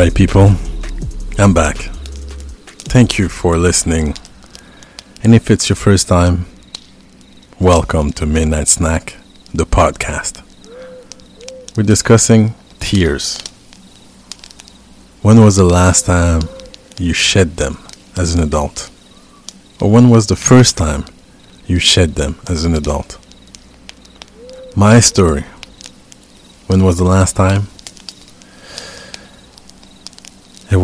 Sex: male